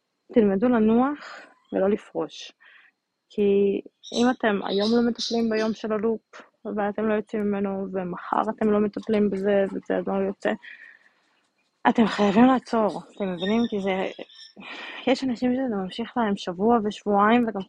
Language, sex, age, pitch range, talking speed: Hebrew, female, 20-39, 180-220 Hz, 135 wpm